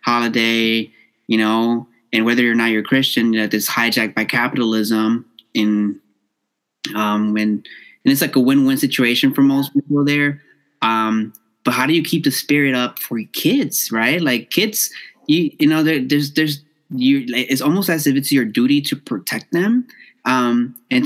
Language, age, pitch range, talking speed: English, 20-39, 115-175 Hz, 170 wpm